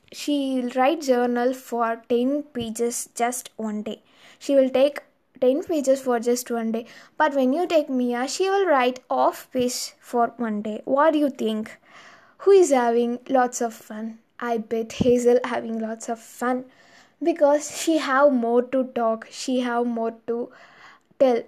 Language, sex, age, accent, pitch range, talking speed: Tamil, female, 20-39, native, 235-275 Hz, 170 wpm